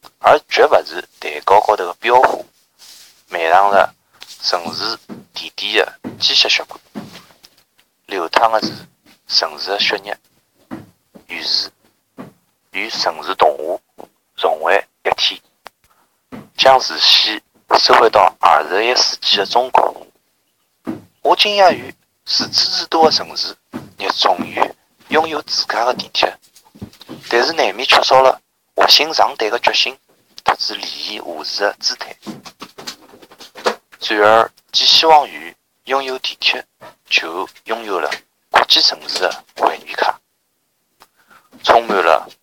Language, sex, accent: Chinese, male, native